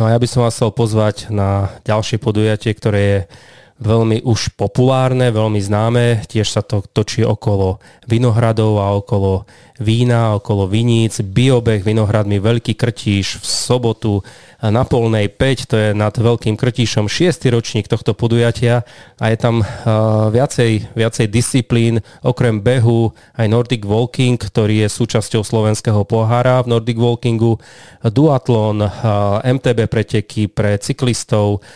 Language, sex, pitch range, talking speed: Slovak, male, 105-120 Hz, 140 wpm